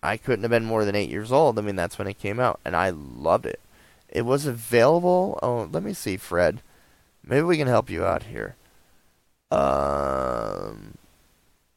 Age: 20-39